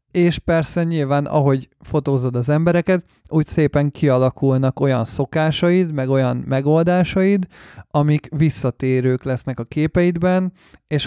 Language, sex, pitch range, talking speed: Hungarian, male, 125-150 Hz, 115 wpm